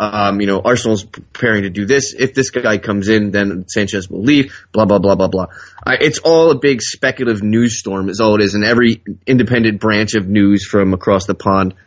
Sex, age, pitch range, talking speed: male, 20-39, 95-115 Hz, 225 wpm